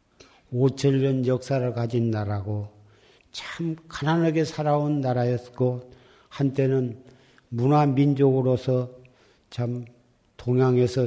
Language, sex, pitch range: Korean, male, 120-140 Hz